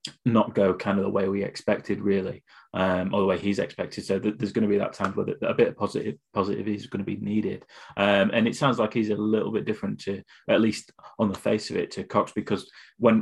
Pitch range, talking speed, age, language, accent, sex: 100-115 Hz, 260 wpm, 20-39, English, British, male